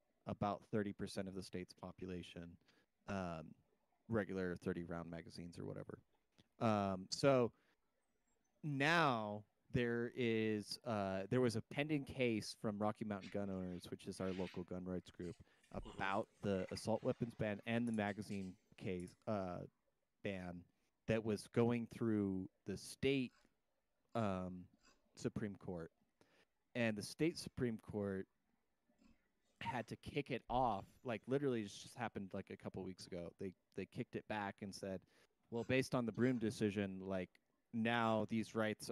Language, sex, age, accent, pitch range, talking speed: English, male, 30-49, American, 95-120 Hz, 145 wpm